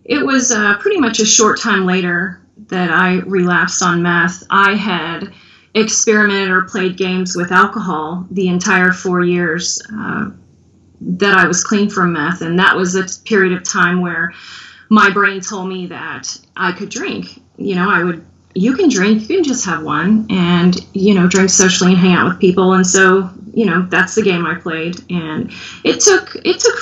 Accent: American